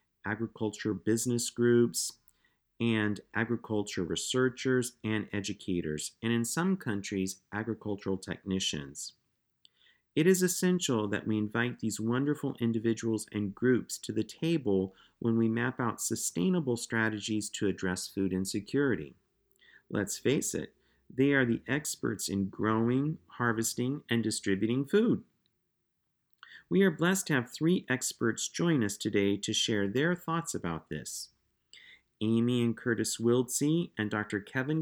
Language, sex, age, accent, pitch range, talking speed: English, male, 40-59, American, 105-135 Hz, 130 wpm